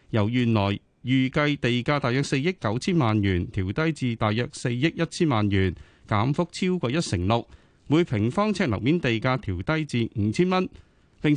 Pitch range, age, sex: 110-155 Hz, 30-49, male